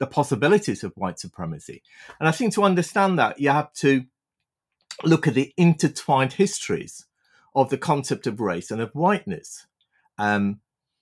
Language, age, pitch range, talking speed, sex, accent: English, 40-59, 95-140 Hz, 150 wpm, male, British